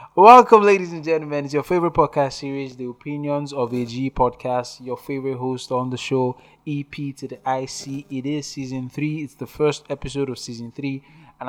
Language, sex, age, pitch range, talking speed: English, male, 20-39, 125-155 Hz, 195 wpm